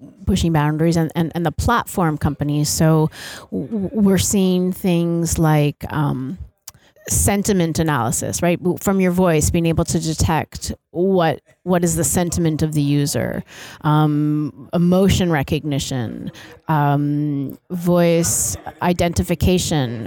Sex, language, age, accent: female, Swedish, 30-49, American